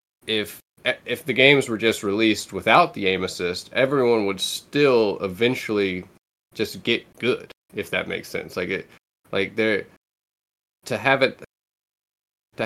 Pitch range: 90-110 Hz